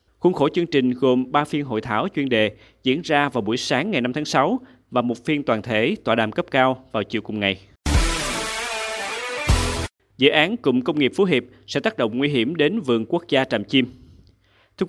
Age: 20-39